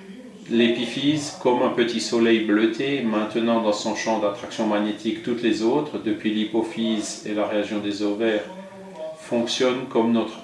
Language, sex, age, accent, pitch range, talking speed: French, male, 40-59, French, 105-130 Hz, 145 wpm